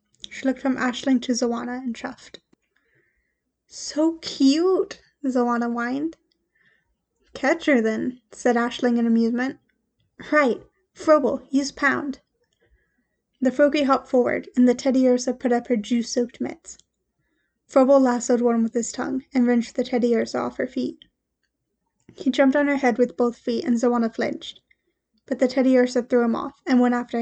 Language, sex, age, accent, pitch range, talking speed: English, female, 10-29, American, 240-270 Hz, 155 wpm